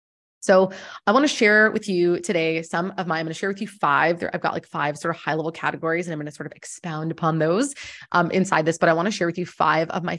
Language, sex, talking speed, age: English, female, 295 wpm, 20-39